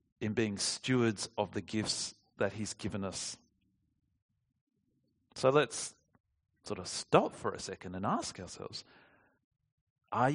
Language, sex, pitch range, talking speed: English, male, 115-150 Hz, 130 wpm